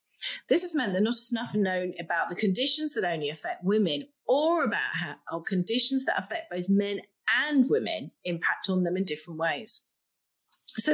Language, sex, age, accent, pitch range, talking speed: English, female, 30-49, British, 170-250 Hz, 170 wpm